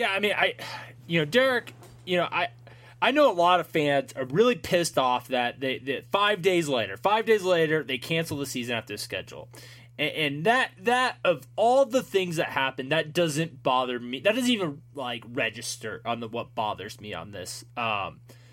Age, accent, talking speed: 20-39, American, 200 wpm